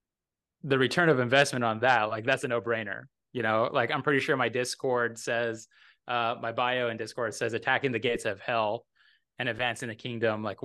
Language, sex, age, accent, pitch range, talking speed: English, male, 20-39, American, 120-150 Hz, 205 wpm